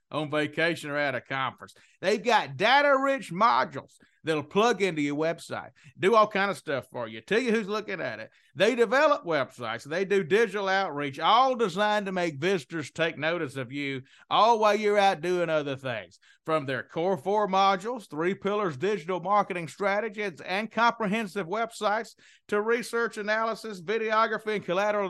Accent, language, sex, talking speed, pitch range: American, English, male, 165 wpm, 155-200 Hz